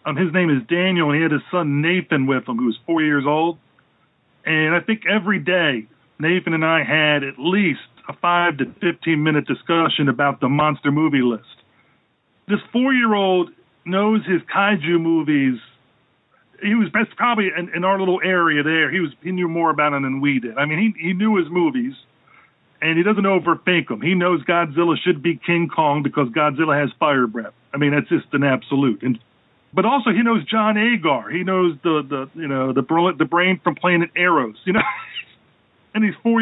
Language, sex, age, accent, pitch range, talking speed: English, male, 40-59, American, 150-185 Hz, 195 wpm